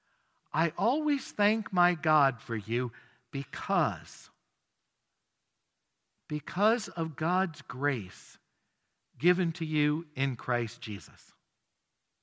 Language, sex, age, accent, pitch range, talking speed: English, male, 50-69, American, 145-215 Hz, 90 wpm